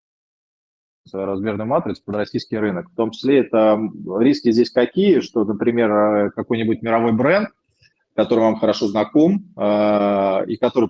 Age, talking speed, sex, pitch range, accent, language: 20-39, 130 wpm, male, 100-120 Hz, native, Russian